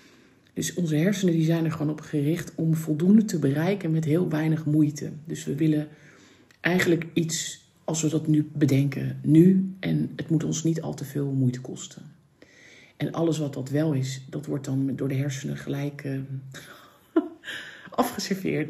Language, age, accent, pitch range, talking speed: Dutch, 40-59, Dutch, 135-160 Hz, 165 wpm